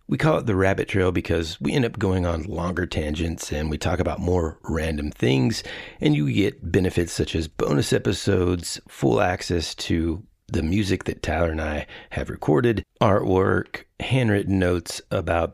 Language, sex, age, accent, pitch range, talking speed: English, male, 40-59, American, 85-110 Hz, 170 wpm